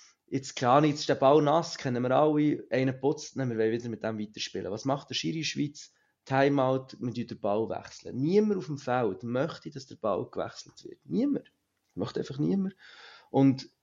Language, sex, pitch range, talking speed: German, male, 120-145 Hz, 215 wpm